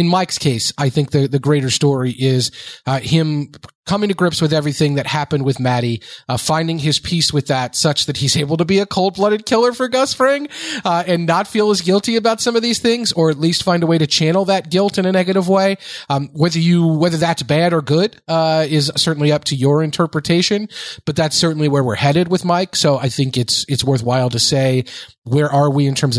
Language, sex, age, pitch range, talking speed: English, male, 30-49, 130-165 Hz, 230 wpm